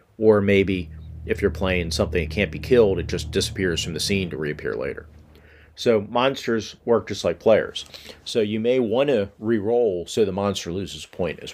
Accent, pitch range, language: American, 90-110 Hz, English